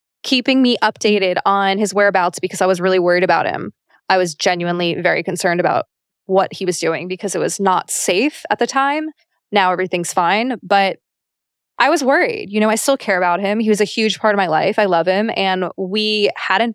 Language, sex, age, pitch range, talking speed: English, female, 20-39, 185-230 Hz, 210 wpm